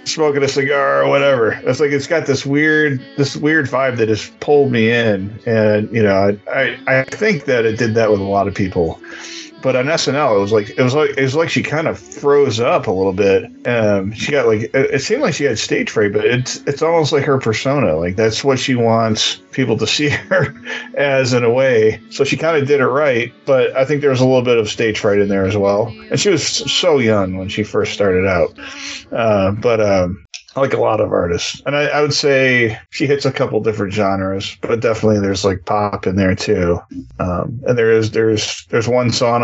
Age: 40-59